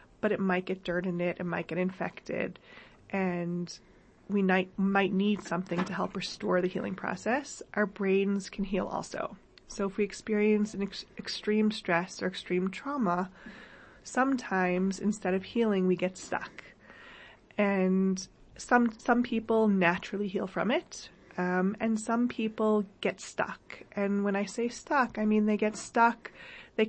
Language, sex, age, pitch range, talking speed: English, female, 30-49, 180-210 Hz, 155 wpm